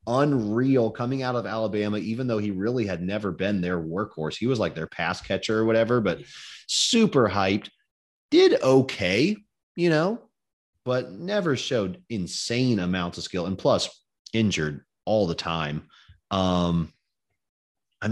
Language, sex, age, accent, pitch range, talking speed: English, male, 30-49, American, 85-120 Hz, 145 wpm